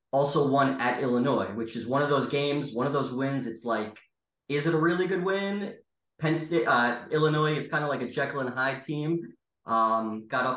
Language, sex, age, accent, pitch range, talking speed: English, male, 20-39, American, 115-150 Hz, 215 wpm